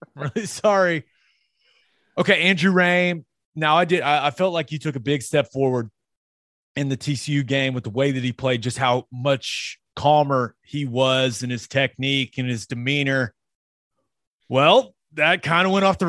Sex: male